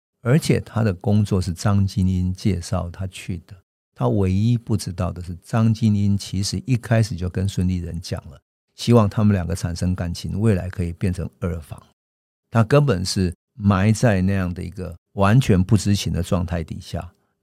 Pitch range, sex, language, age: 85-105 Hz, male, Chinese, 50-69